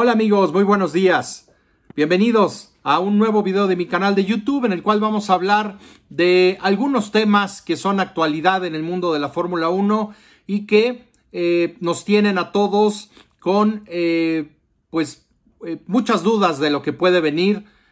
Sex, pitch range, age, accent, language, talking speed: male, 165-205 Hz, 50-69, Mexican, Spanish, 170 wpm